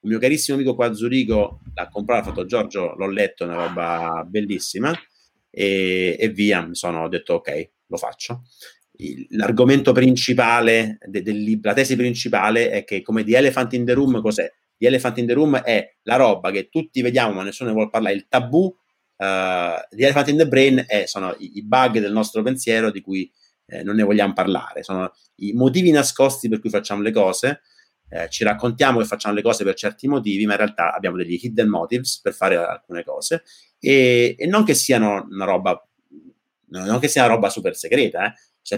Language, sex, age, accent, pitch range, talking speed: Italian, male, 30-49, native, 100-130 Hz, 200 wpm